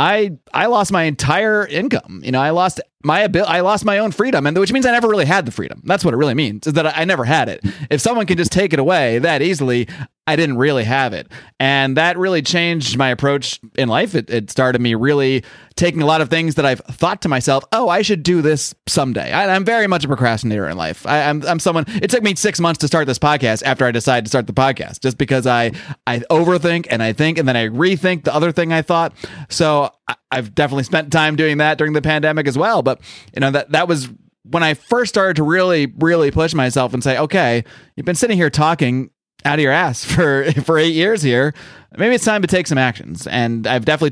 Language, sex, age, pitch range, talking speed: English, male, 30-49, 130-170 Hz, 240 wpm